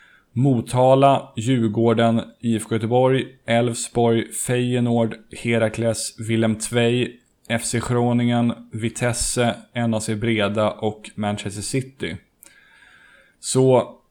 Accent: native